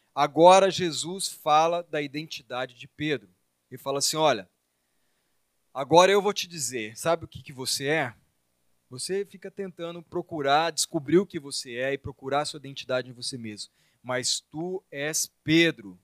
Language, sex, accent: Portuguese, male, Brazilian